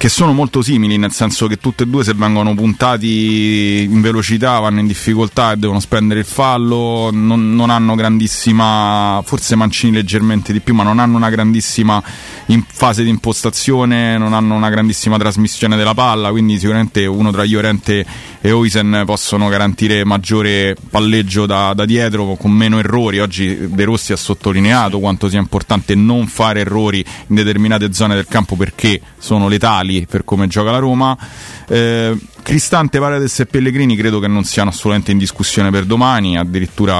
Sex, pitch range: male, 100-115 Hz